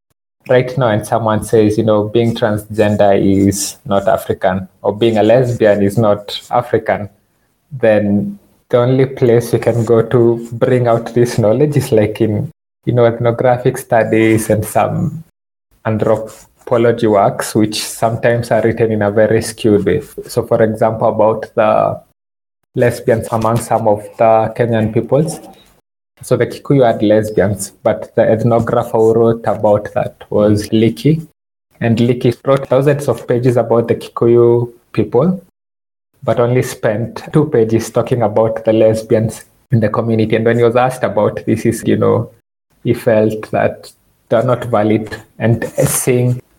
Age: 20-39